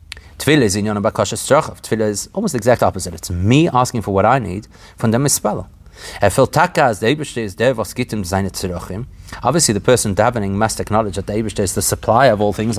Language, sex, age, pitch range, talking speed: English, male, 30-49, 100-125 Hz, 145 wpm